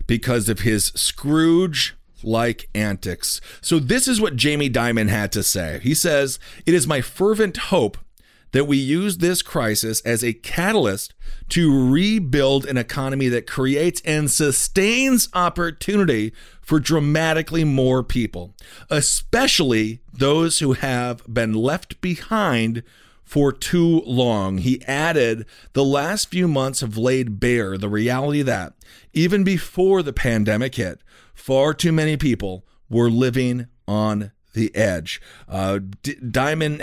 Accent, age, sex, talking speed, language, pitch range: American, 40-59, male, 130 wpm, English, 110-150 Hz